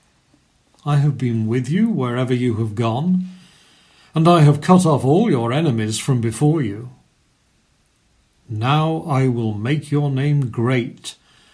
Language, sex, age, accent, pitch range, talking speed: English, male, 50-69, British, 120-175 Hz, 140 wpm